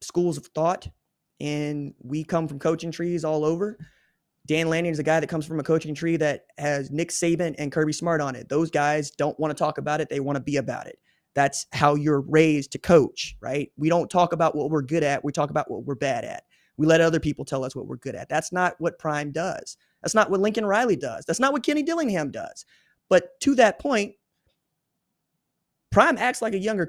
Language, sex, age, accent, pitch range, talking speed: English, male, 20-39, American, 150-210 Hz, 230 wpm